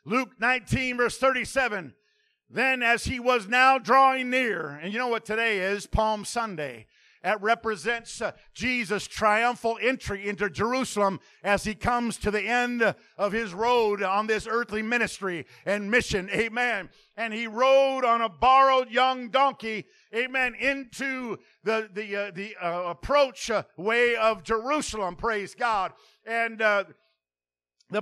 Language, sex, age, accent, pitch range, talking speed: English, male, 50-69, American, 215-260 Hz, 150 wpm